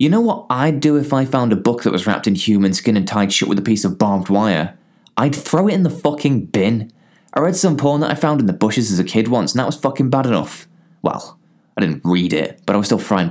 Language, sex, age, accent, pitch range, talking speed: English, male, 20-39, British, 100-150 Hz, 280 wpm